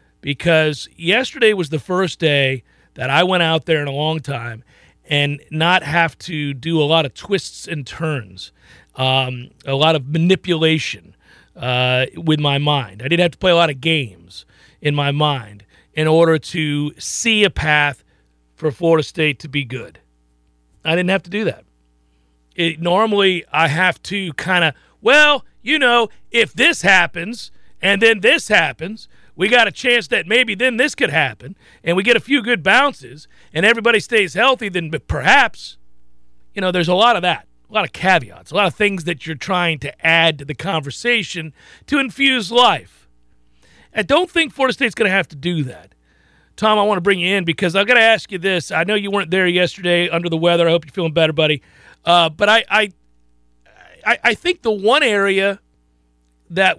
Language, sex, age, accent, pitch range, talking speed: English, male, 40-59, American, 140-200 Hz, 190 wpm